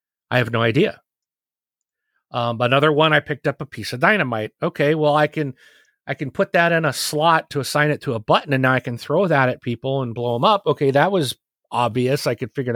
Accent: American